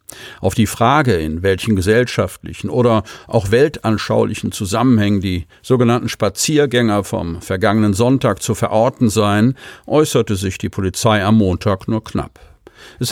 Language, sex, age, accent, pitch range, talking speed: German, male, 50-69, German, 100-125 Hz, 130 wpm